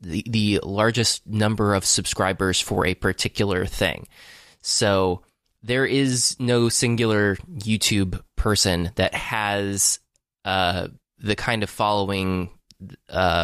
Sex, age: male, 20-39